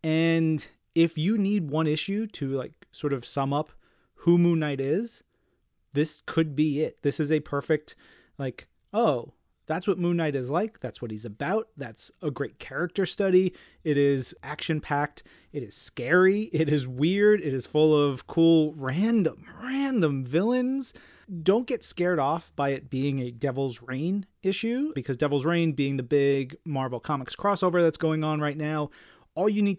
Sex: male